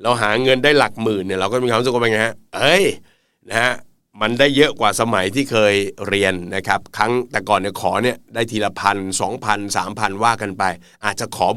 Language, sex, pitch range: Thai, male, 95-120 Hz